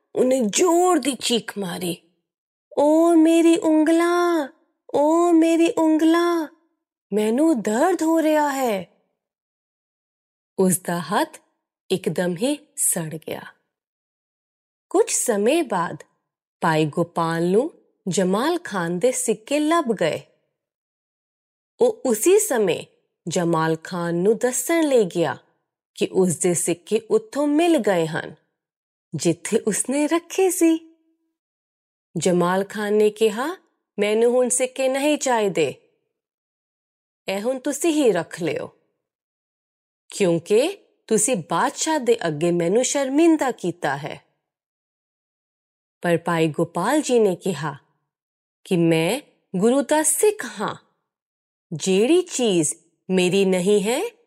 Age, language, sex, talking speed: 20-39, Punjabi, female, 105 wpm